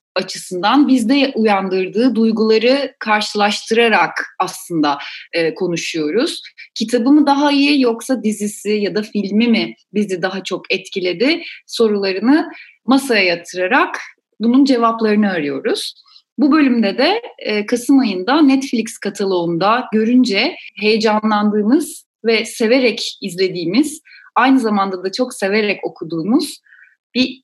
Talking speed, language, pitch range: 105 wpm, Turkish, 195-265 Hz